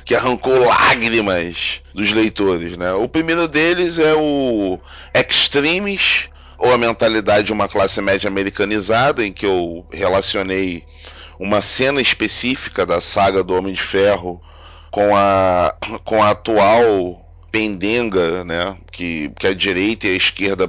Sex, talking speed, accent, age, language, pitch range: male, 135 wpm, Brazilian, 20-39, Portuguese, 90-115 Hz